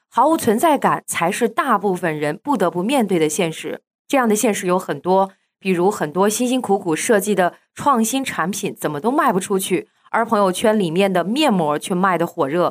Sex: female